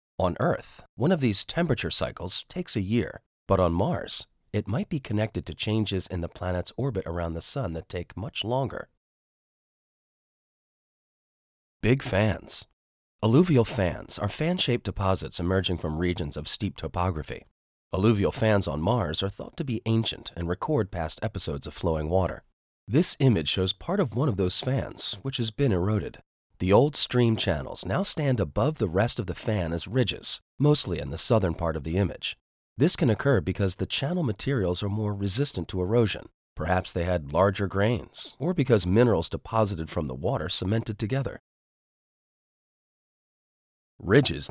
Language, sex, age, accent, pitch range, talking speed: English, male, 30-49, American, 85-120 Hz, 165 wpm